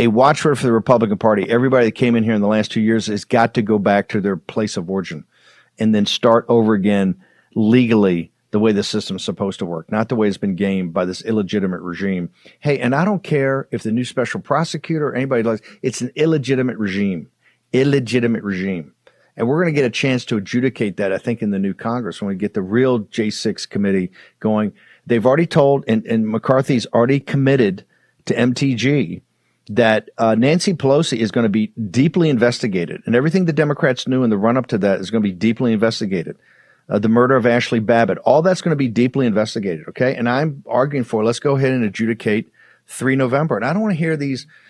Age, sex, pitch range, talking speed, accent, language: 50-69, male, 110-150 Hz, 215 wpm, American, English